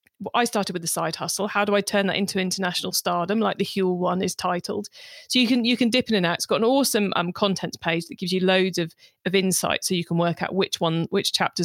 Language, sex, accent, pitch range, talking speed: English, female, British, 175-225 Hz, 270 wpm